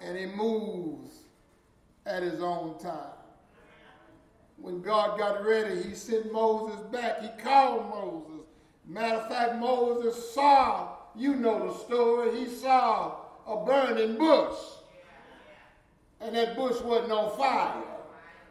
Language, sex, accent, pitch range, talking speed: English, male, American, 205-280 Hz, 125 wpm